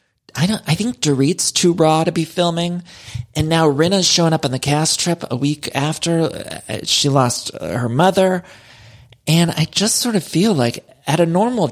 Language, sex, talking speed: English, male, 185 wpm